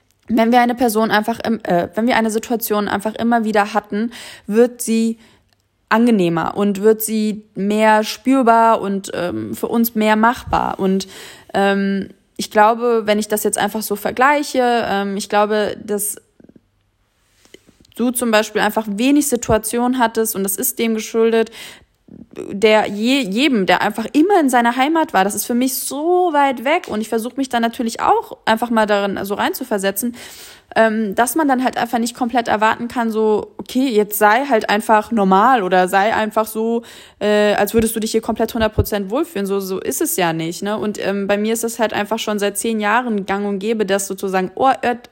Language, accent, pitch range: German, German, 205-235 Hz